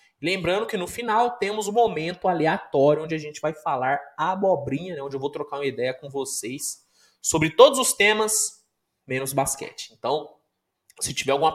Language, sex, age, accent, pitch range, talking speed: Portuguese, male, 20-39, Brazilian, 145-215 Hz, 170 wpm